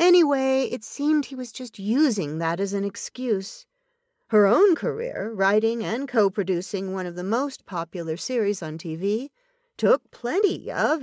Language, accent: English, American